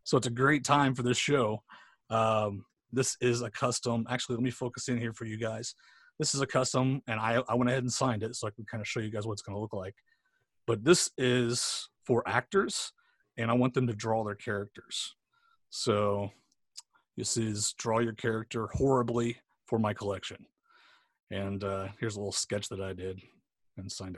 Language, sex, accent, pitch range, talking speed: English, male, American, 105-125 Hz, 205 wpm